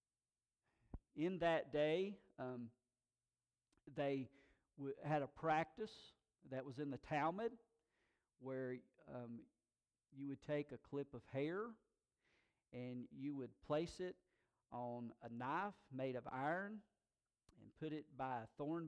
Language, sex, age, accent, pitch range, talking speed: English, male, 50-69, American, 130-200 Hz, 125 wpm